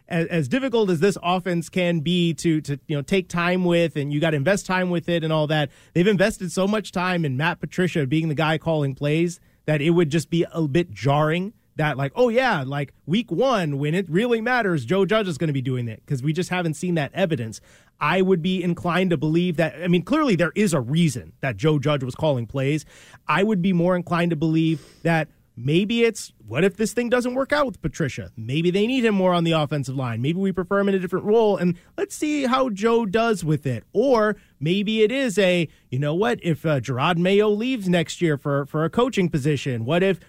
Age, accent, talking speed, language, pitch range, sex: 30-49, American, 235 wpm, English, 155-195 Hz, male